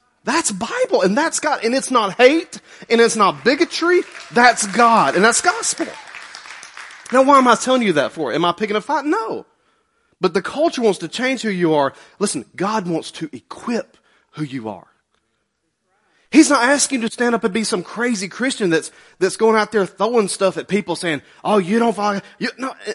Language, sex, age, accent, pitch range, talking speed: English, male, 30-49, American, 185-265 Hz, 205 wpm